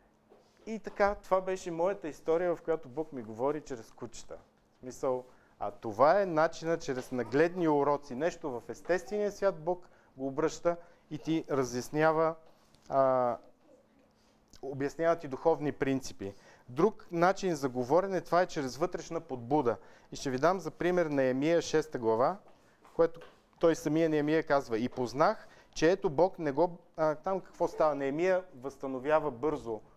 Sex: male